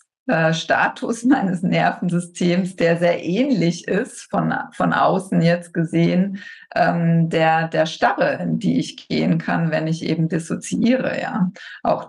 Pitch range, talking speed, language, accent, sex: 160-180 Hz, 135 wpm, German, German, female